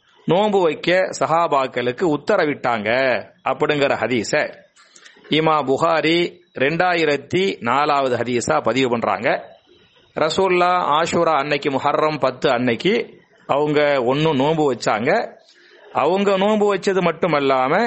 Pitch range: 140-190 Hz